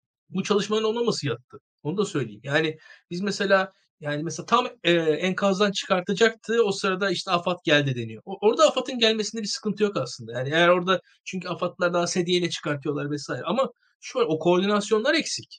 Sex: male